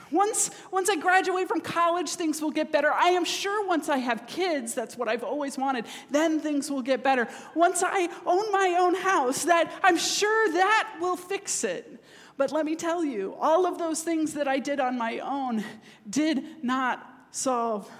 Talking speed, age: 195 wpm, 40-59